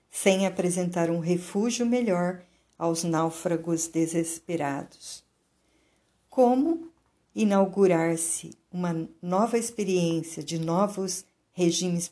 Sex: female